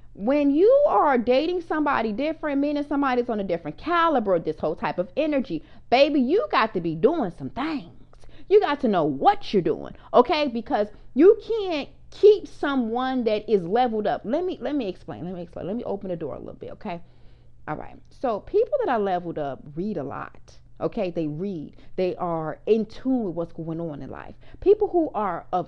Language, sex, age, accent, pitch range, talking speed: English, female, 30-49, American, 190-290 Hz, 205 wpm